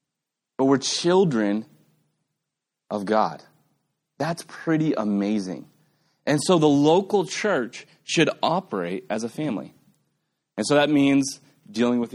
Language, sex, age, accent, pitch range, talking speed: English, male, 30-49, American, 115-155 Hz, 120 wpm